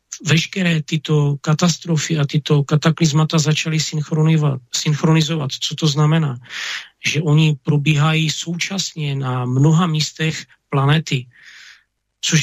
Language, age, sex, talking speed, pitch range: Slovak, 40-59, male, 95 wpm, 145-170 Hz